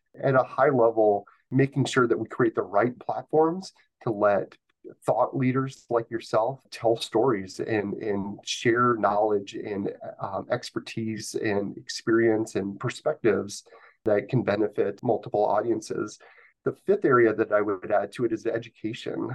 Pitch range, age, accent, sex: 105-125 Hz, 30-49, American, male